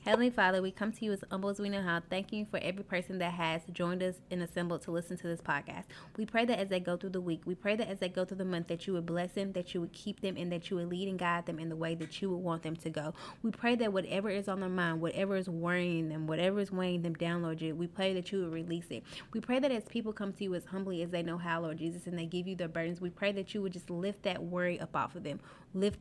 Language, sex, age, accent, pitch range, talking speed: English, female, 20-39, American, 170-195 Hz, 315 wpm